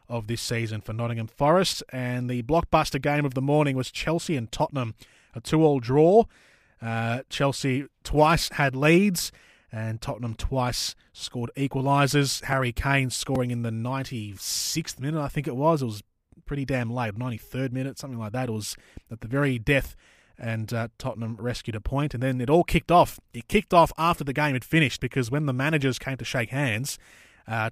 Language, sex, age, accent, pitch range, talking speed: English, male, 20-39, Australian, 115-150 Hz, 185 wpm